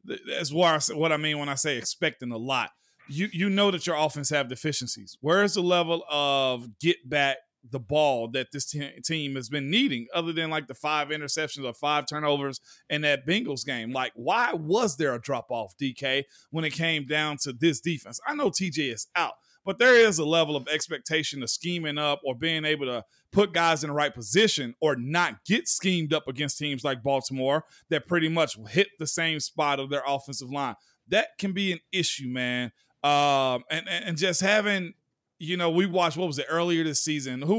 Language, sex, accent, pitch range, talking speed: English, male, American, 140-170 Hz, 205 wpm